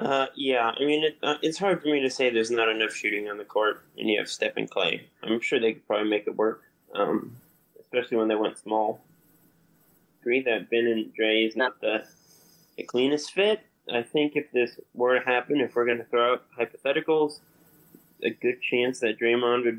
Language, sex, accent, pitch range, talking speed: English, male, American, 110-135 Hz, 215 wpm